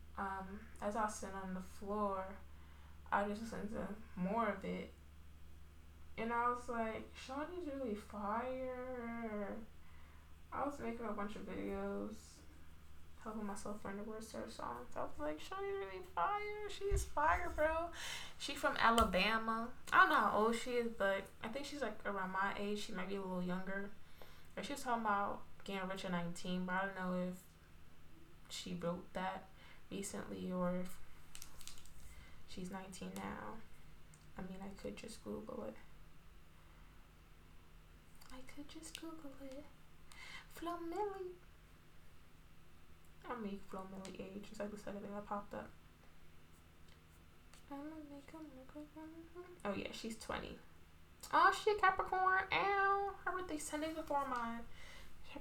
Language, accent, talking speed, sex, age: English, American, 150 wpm, female, 10-29